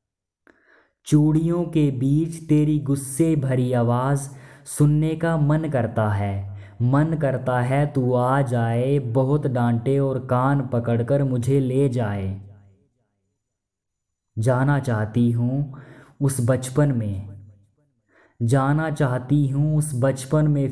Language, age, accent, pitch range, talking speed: Hindi, 20-39, native, 110-140 Hz, 110 wpm